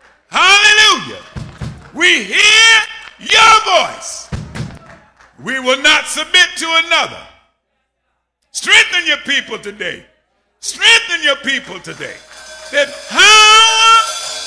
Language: English